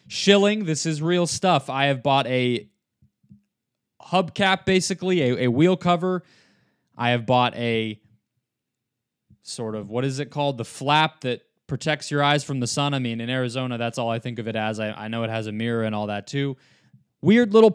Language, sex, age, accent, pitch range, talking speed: English, male, 20-39, American, 125-165 Hz, 195 wpm